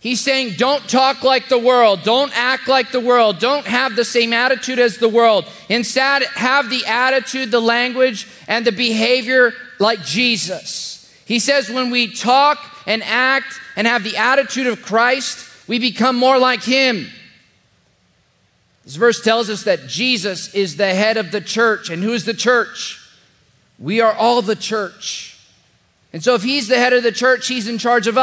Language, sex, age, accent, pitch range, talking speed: English, male, 30-49, American, 195-245 Hz, 180 wpm